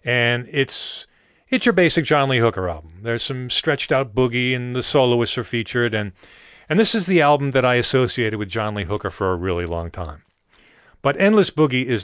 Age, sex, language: 40-59, male, English